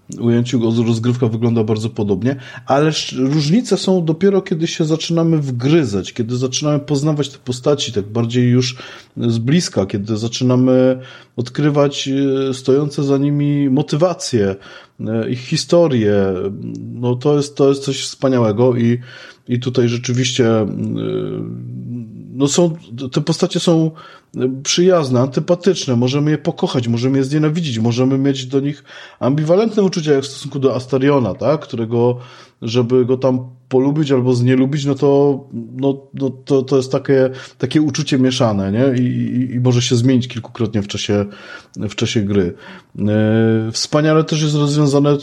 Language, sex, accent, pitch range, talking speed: Polish, male, native, 120-150 Hz, 135 wpm